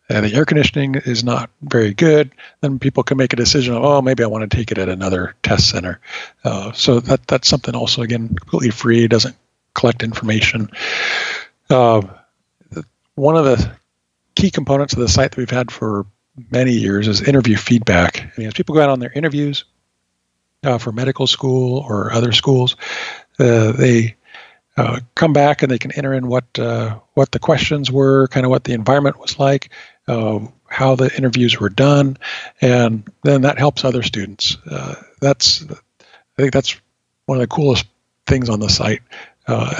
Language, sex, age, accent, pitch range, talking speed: English, male, 50-69, American, 115-140 Hz, 180 wpm